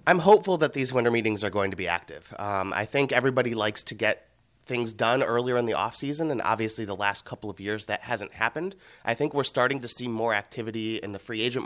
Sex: male